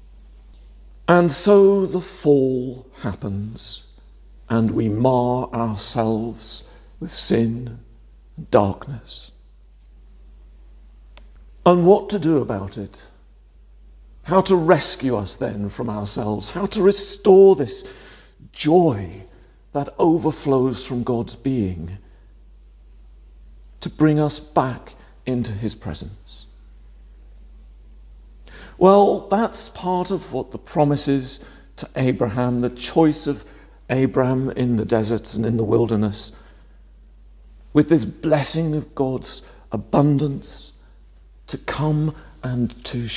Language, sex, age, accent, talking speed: English, male, 50-69, British, 105 wpm